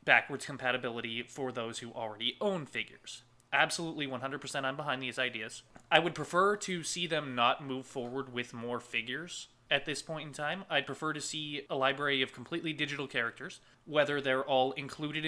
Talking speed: 175 wpm